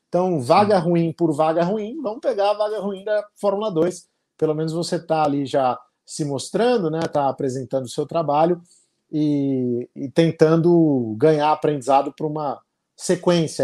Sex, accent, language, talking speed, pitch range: male, Brazilian, Portuguese, 160 wpm, 135-170 Hz